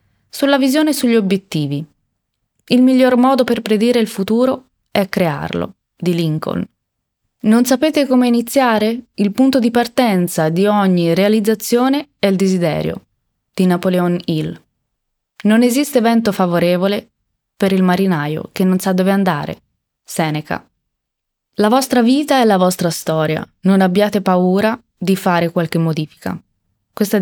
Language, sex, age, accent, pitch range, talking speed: Italian, female, 20-39, native, 160-220 Hz, 130 wpm